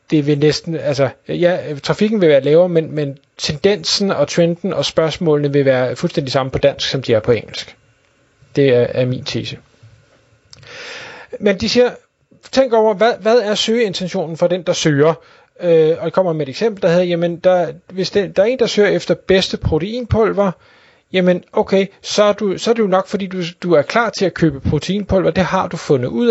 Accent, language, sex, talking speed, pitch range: native, Danish, male, 200 wpm, 150-195 Hz